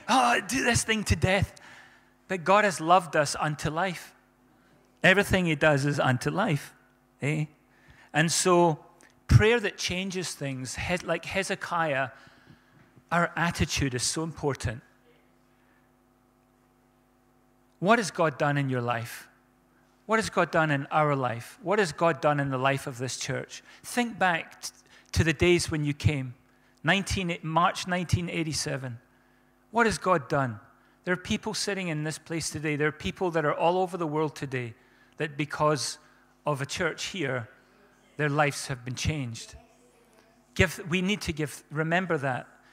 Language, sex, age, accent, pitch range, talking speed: English, male, 40-59, British, 135-180 Hz, 150 wpm